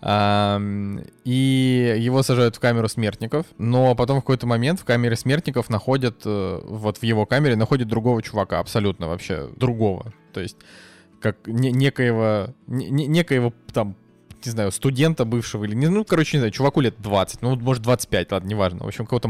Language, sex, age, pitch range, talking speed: Russian, male, 20-39, 105-125 Hz, 160 wpm